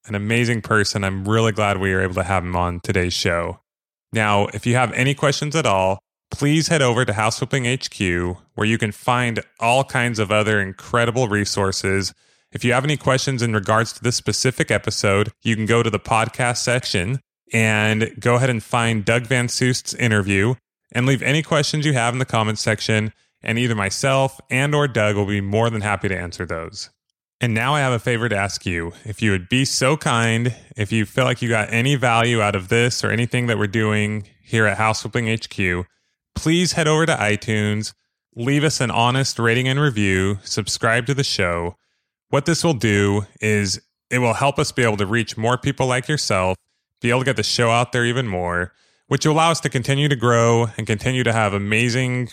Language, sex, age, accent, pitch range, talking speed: English, male, 20-39, American, 105-130 Hz, 210 wpm